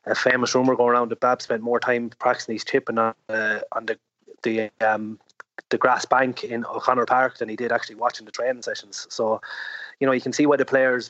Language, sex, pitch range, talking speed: English, male, 110-125 Hz, 225 wpm